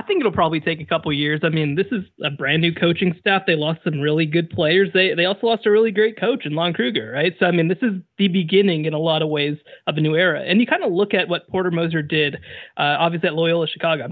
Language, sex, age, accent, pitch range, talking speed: English, male, 20-39, American, 155-195 Hz, 290 wpm